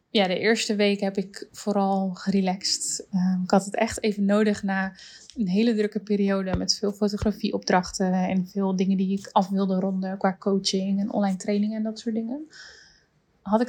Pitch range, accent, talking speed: 195-220 Hz, Dutch, 185 wpm